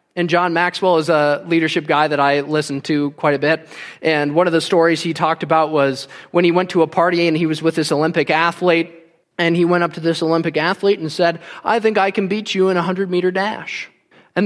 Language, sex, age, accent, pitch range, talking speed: English, male, 20-39, American, 170-250 Hz, 235 wpm